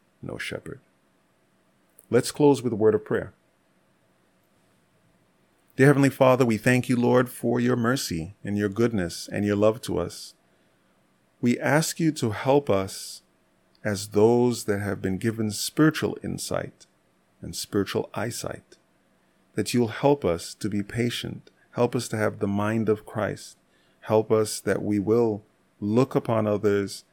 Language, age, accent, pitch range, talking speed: English, 30-49, American, 95-115 Hz, 150 wpm